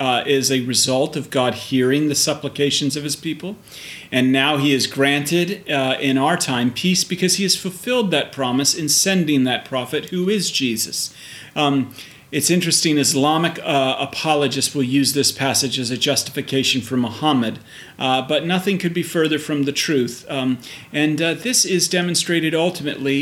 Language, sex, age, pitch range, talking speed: English, male, 40-59, 140-170 Hz, 170 wpm